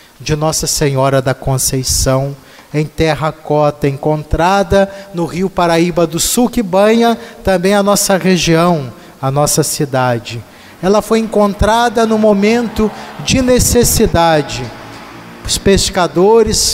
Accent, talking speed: Brazilian, 110 wpm